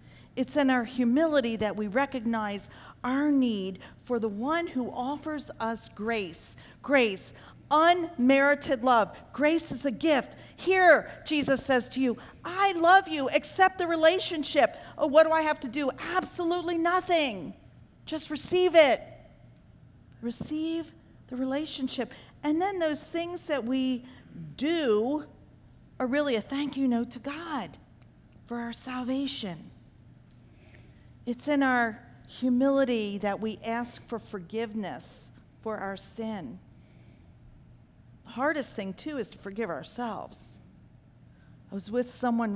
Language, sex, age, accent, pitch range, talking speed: English, female, 40-59, American, 225-305 Hz, 125 wpm